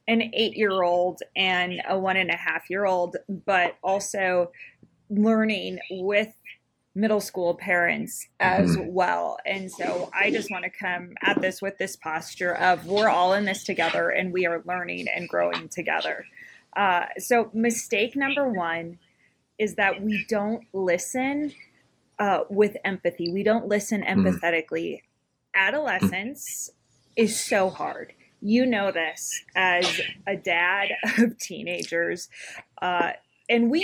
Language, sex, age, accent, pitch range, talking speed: English, female, 20-39, American, 180-225 Hz, 130 wpm